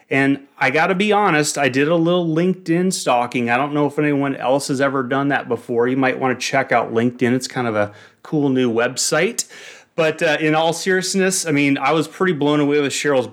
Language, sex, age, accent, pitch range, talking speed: English, male, 30-49, American, 125-165 Hz, 230 wpm